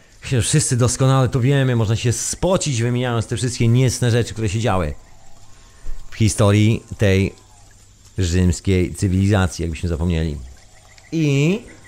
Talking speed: 115 wpm